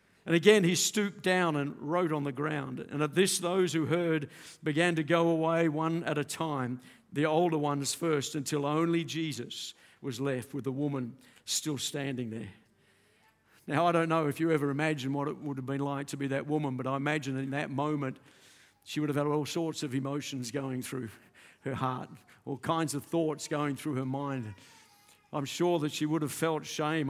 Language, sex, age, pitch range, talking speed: English, male, 50-69, 140-170 Hz, 200 wpm